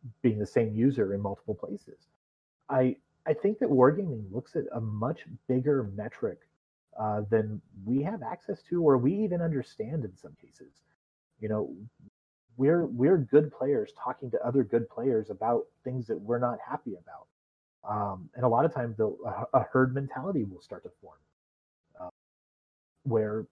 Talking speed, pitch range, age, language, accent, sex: 165 wpm, 110-140 Hz, 30-49, English, American, male